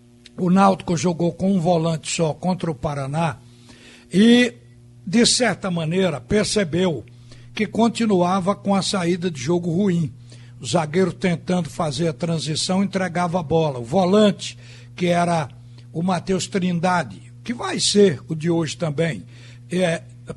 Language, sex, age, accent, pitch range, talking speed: Portuguese, male, 60-79, Brazilian, 155-205 Hz, 140 wpm